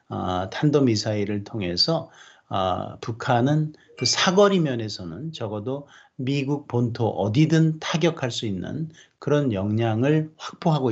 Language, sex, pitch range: Korean, male, 110-150 Hz